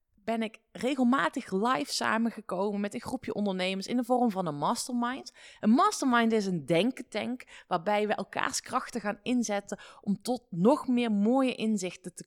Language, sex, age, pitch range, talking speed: Dutch, female, 20-39, 195-255 Hz, 160 wpm